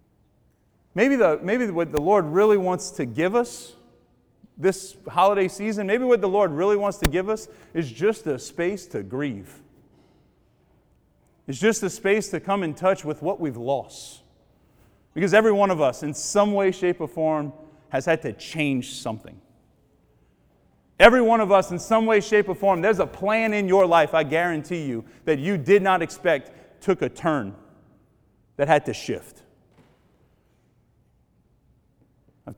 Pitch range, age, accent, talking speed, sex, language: 155-200 Hz, 30-49, American, 160 wpm, male, English